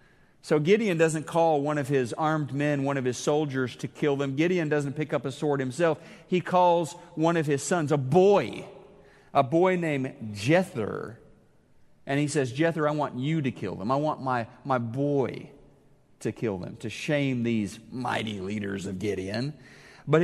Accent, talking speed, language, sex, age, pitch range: American, 180 wpm, English, male, 40-59, 120-155 Hz